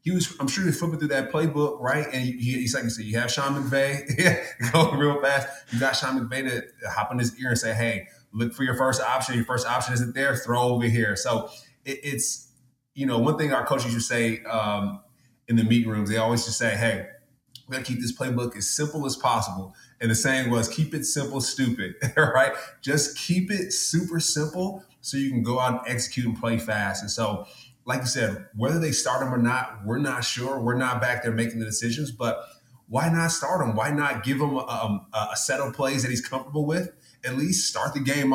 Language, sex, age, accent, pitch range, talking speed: English, male, 20-39, American, 115-140 Hz, 235 wpm